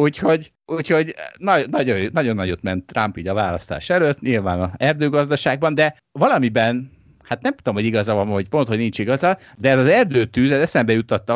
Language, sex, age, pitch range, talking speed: Hungarian, male, 30-49, 95-135 Hz, 175 wpm